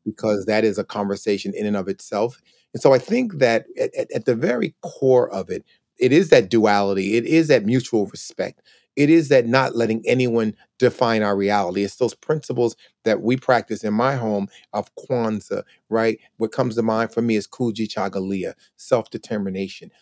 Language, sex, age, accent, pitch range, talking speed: English, male, 30-49, American, 105-130 Hz, 180 wpm